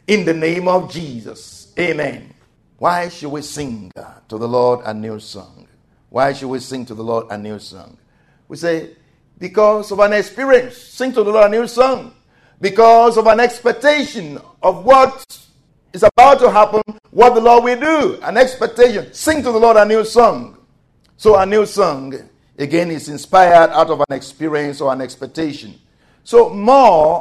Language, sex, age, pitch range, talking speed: English, male, 50-69, 145-210 Hz, 175 wpm